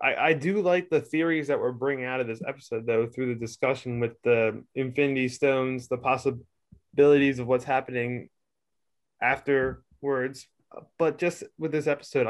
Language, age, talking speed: English, 20-39, 155 wpm